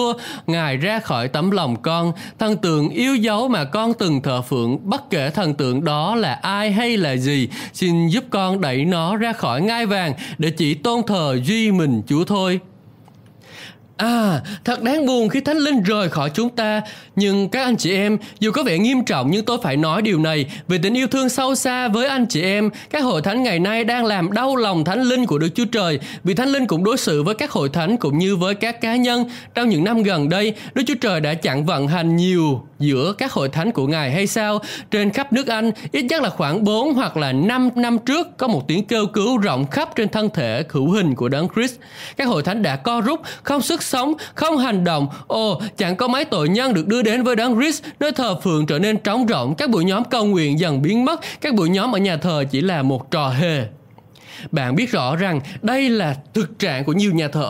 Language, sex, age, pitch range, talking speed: Vietnamese, male, 20-39, 160-235 Hz, 230 wpm